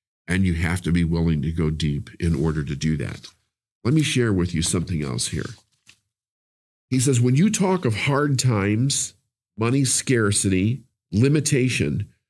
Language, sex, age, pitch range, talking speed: English, male, 50-69, 105-140 Hz, 160 wpm